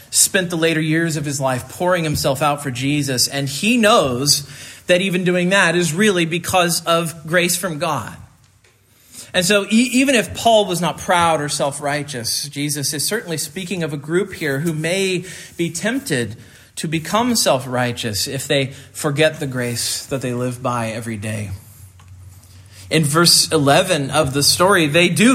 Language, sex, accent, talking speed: English, male, American, 170 wpm